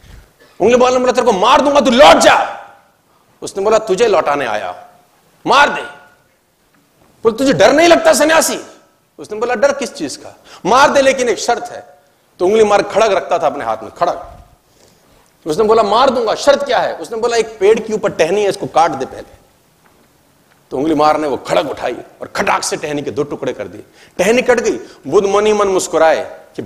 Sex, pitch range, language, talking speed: male, 210-285 Hz, Hindi, 185 wpm